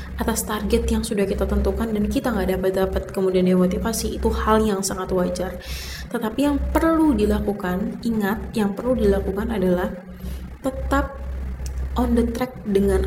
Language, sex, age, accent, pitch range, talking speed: Indonesian, female, 20-39, native, 180-215 Hz, 140 wpm